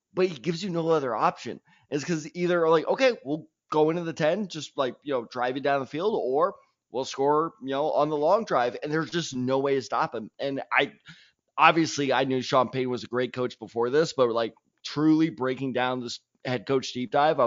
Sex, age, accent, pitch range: male, 20-39, American, 130-165 Hz